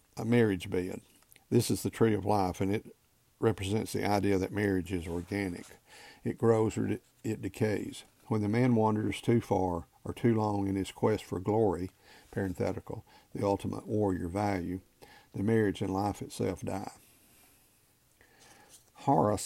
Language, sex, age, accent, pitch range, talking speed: English, male, 50-69, American, 95-115 Hz, 150 wpm